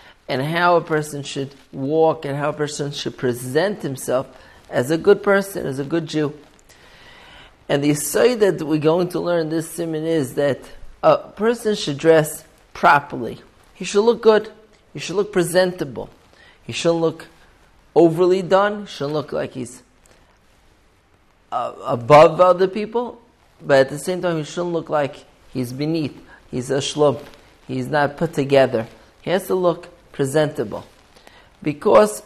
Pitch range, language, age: 135-165 Hz, English, 40-59